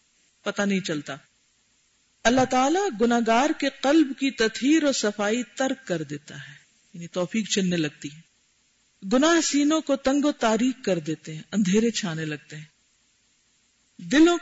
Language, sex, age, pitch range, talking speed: Urdu, female, 50-69, 160-240 Hz, 145 wpm